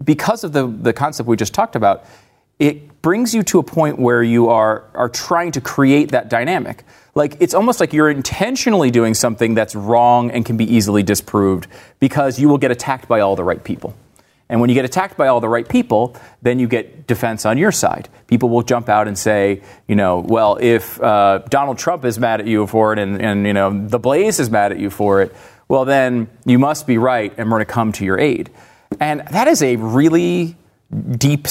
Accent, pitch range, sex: American, 115-150 Hz, male